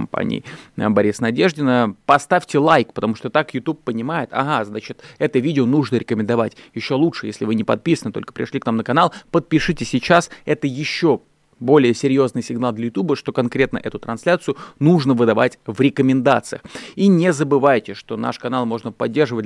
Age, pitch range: 20-39, 115-140 Hz